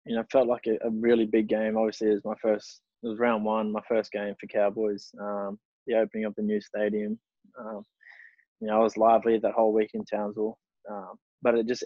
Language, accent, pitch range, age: English, Australian, 105-115 Hz, 20-39